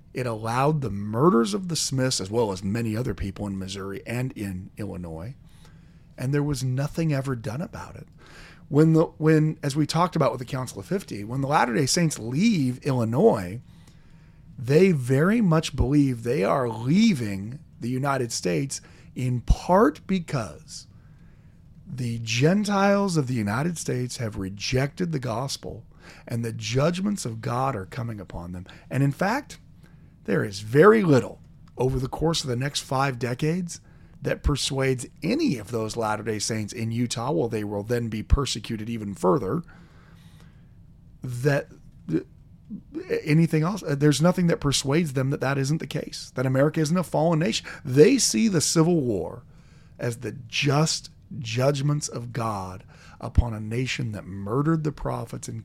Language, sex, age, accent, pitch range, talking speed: English, male, 40-59, American, 115-155 Hz, 160 wpm